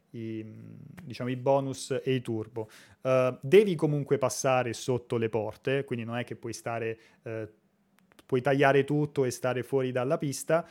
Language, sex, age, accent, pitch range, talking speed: Italian, male, 30-49, native, 120-145 Hz, 145 wpm